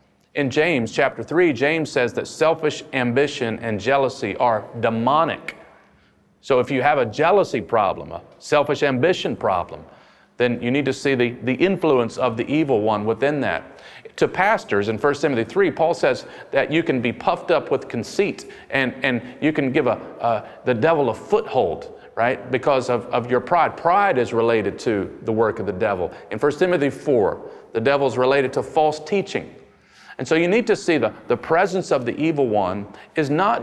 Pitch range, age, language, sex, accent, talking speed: 130-185 Hz, 40-59, English, male, American, 185 wpm